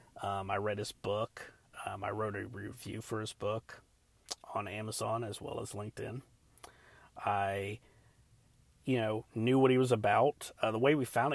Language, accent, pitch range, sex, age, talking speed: English, American, 110-130 Hz, male, 40-59, 170 wpm